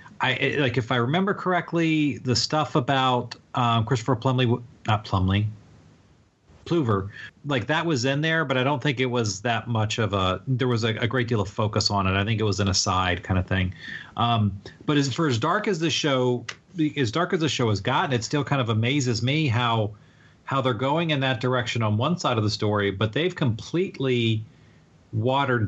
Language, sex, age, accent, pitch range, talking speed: English, male, 40-59, American, 110-140 Hz, 205 wpm